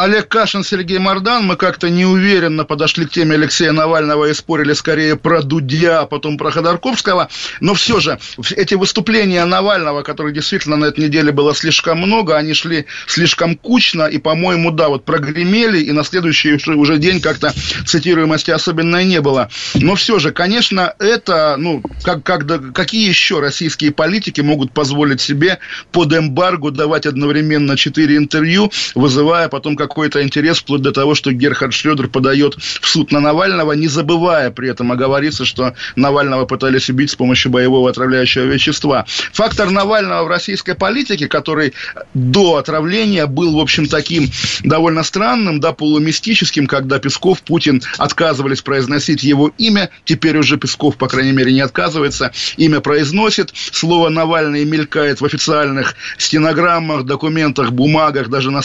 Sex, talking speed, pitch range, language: male, 150 wpm, 145-170 Hz, Russian